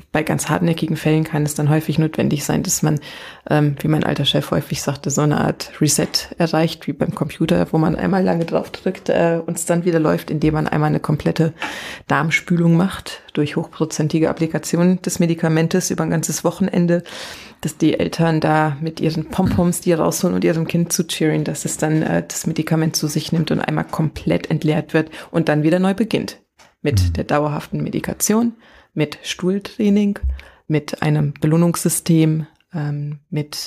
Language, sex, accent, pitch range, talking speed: German, female, German, 150-170 Hz, 175 wpm